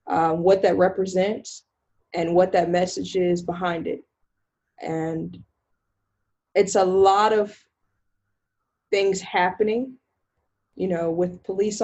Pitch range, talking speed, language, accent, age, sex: 175-195 Hz, 110 wpm, English, American, 20-39, female